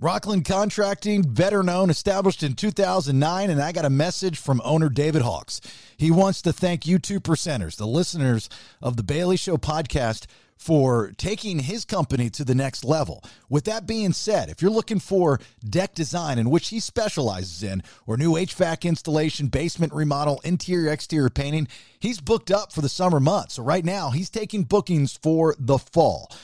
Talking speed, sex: 175 wpm, male